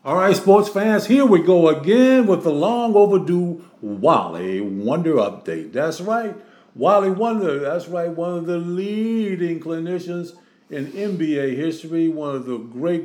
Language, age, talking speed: English, 50-69, 150 wpm